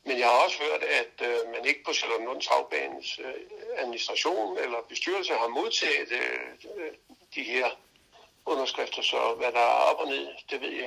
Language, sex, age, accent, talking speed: Danish, male, 60-79, native, 160 wpm